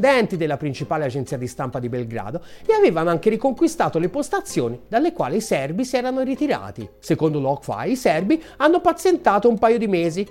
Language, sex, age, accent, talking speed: Italian, male, 40-59, native, 175 wpm